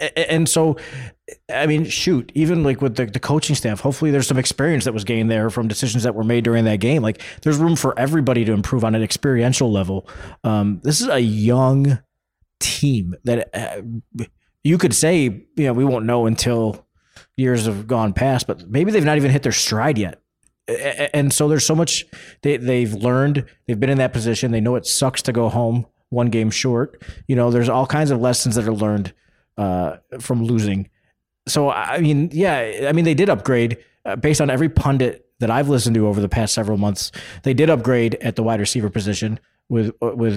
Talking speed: 200 wpm